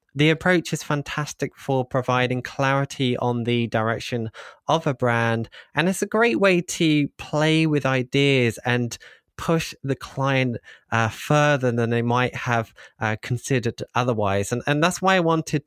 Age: 20-39